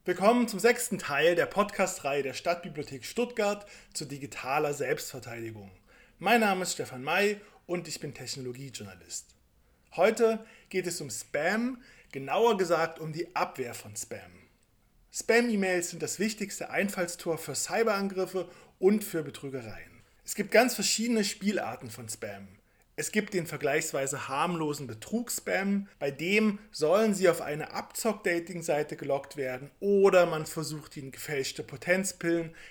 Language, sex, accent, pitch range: German, male, German, 135-195 Hz